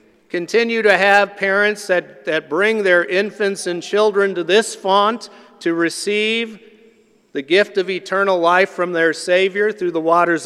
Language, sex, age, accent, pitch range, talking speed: English, male, 50-69, American, 160-200 Hz, 155 wpm